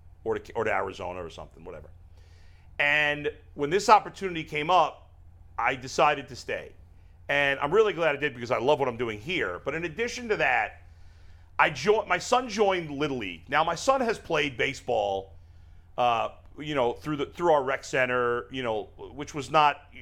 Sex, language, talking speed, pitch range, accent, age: male, English, 185 wpm, 95-160 Hz, American, 40-59